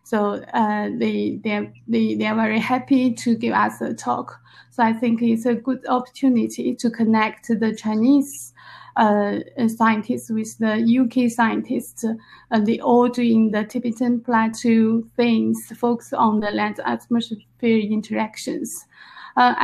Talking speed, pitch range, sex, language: 140 wpm, 210-235 Hz, female, English